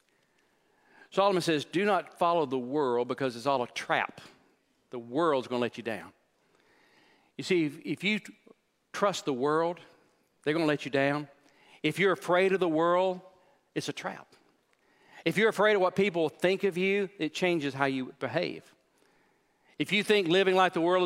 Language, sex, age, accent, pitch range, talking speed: English, male, 50-69, American, 150-185 Hz, 180 wpm